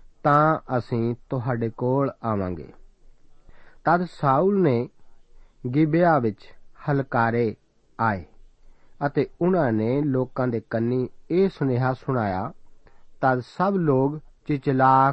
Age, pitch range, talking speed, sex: 50-69, 120-150 Hz, 100 wpm, male